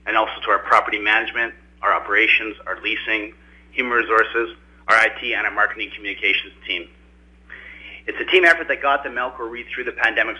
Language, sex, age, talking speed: English, male, 30-49, 180 wpm